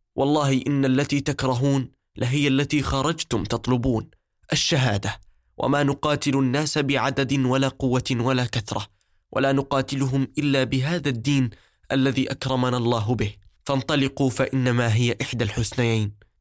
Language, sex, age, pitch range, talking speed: Arabic, male, 20-39, 115-135 Hz, 115 wpm